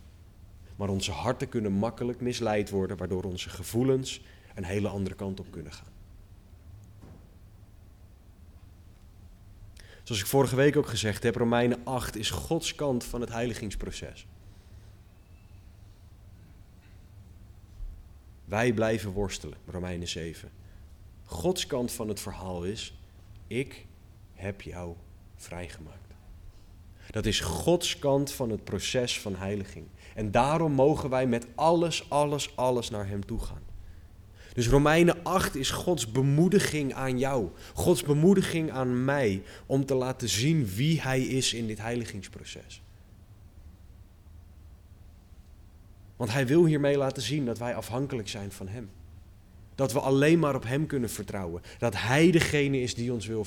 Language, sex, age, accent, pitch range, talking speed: Dutch, male, 30-49, Dutch, 95-125 Hz, 130 wpm